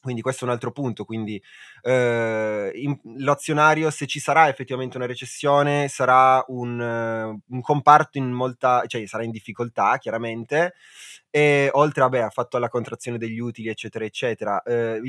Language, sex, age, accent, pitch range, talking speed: Italian, male, 20-39, native, 120-145 Hz, 160 wpm